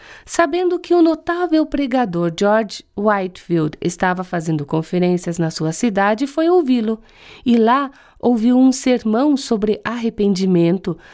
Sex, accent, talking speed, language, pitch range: female, Brazilian, 120 wpm, Portuguese, 185-250 Hz